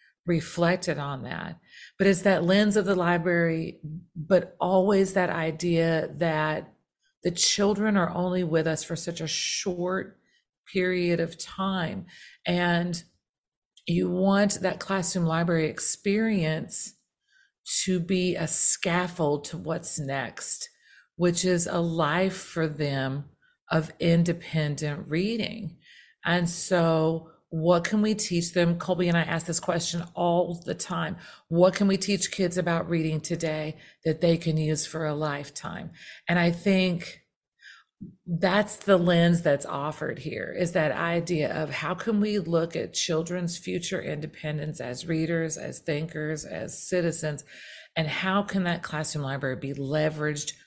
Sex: female